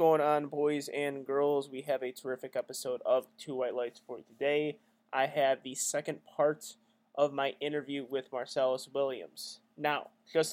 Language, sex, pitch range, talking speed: English, male, 130-165 Hz, 165 wpm